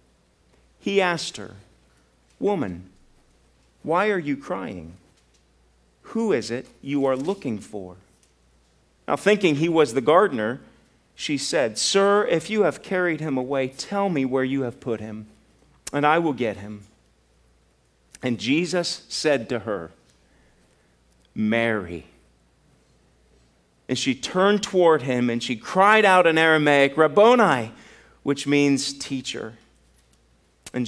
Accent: American